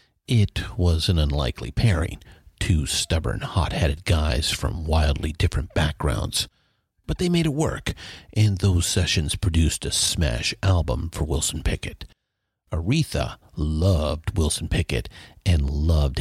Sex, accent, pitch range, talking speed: male, American, 80-100 Hz, 125 wpm